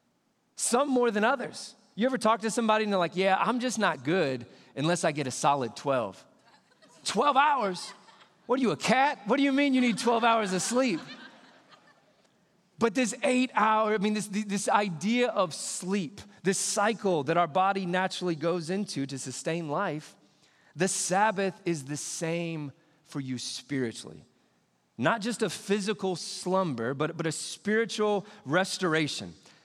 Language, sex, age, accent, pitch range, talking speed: English, male, 30-49, American, 170-215 Hz, 160 wpm